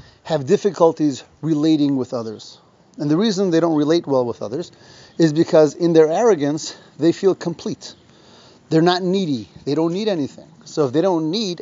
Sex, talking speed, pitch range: male, 175 wpm, 155-195 Hz